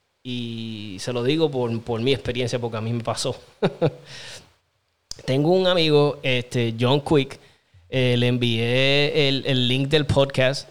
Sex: male